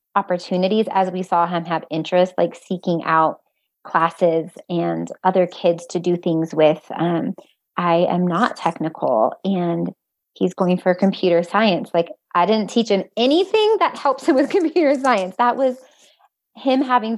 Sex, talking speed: female, 155 wpm